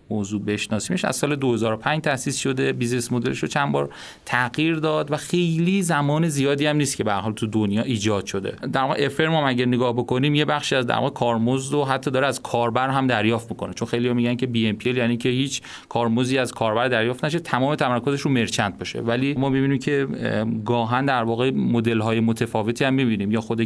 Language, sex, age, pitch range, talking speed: Persian, male, 30-49, 110-130 Hz, 205 wpm